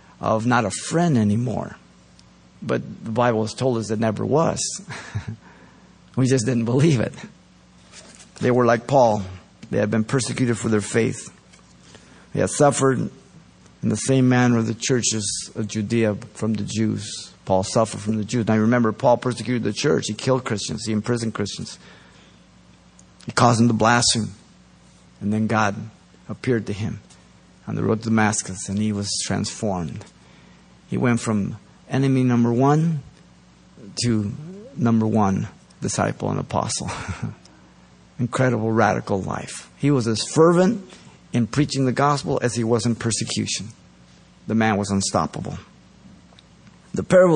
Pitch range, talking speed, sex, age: 105-130 Hz, 150 wpm, male, 50-69